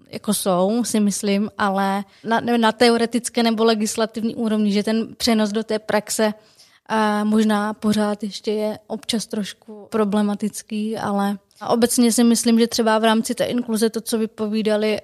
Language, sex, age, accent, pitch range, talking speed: Czech, female, 20-39, native, 205-225 Hz, 150 wpm